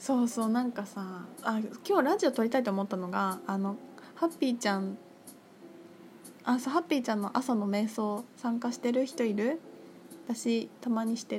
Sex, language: female, Japanese